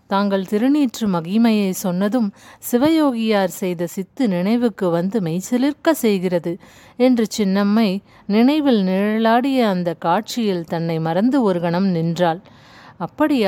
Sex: female